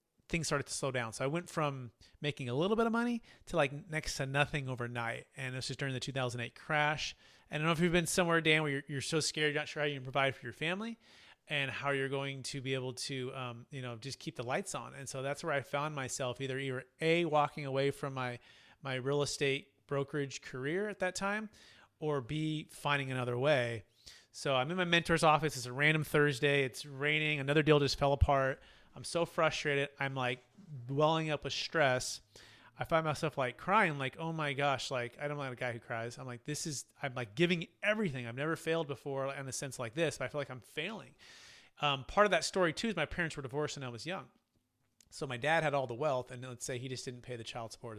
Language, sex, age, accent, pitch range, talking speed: English, male, 30-49, American, 125-155 Hz, 245 wpm